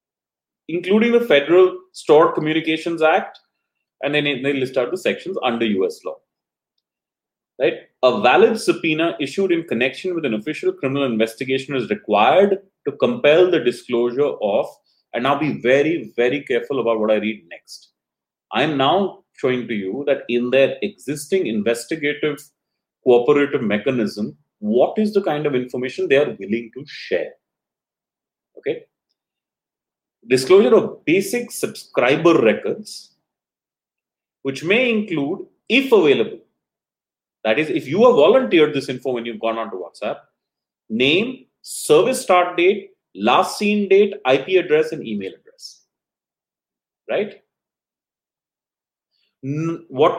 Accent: Indian